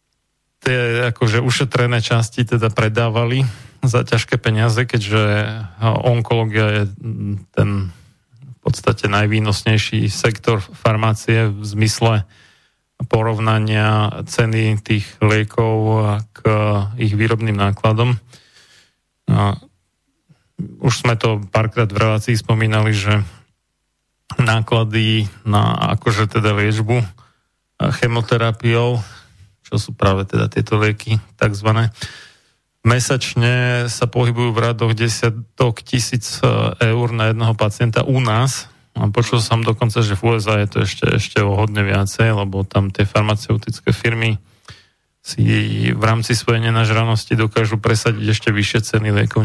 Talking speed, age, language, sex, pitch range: 110 wpm, 30-49, Slovak, male, 105-120 Hz